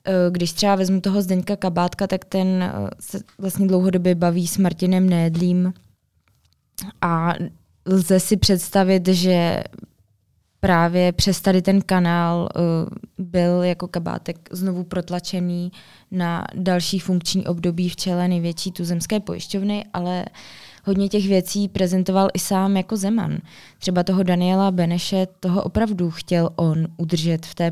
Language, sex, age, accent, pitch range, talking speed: Czech, female, 20-39, native, 170-190 Hz, 130 wpm